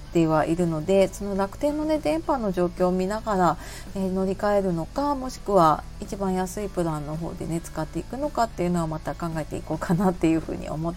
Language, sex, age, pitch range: Japanese, female, 40-59, 165-215 Hz